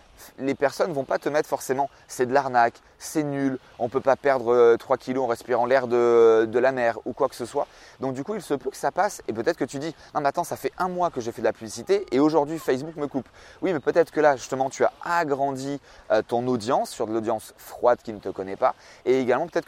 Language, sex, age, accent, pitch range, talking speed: French, male, 30-49, French, 115-140 Hz, 270 wpm